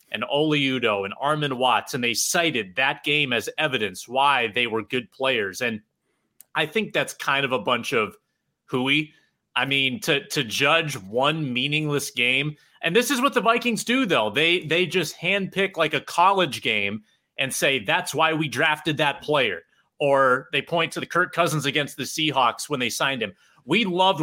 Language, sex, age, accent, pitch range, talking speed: English, male, 30-49, American, 130-175 Hz, 190 wpm